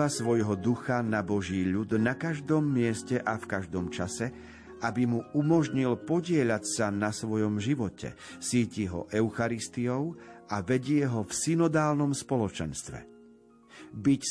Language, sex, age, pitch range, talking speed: Slovak, male, 50-69, 105-145 Hz, 125 wpm